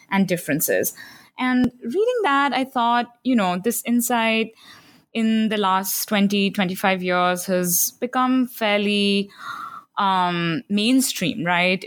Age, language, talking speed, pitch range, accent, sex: 20-39, English, 115 wpm, 180-220 Hz, Indian, female